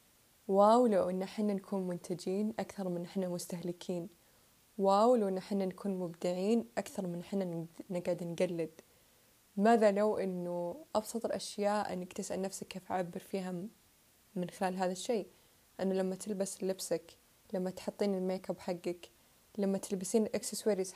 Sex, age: female, 20-39